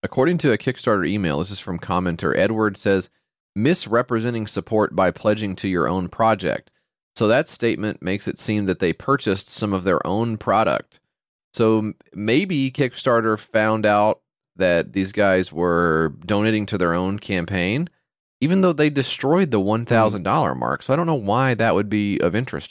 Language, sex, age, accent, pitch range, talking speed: English, male, 30-49, American, 90-115 Hz, 170 wpm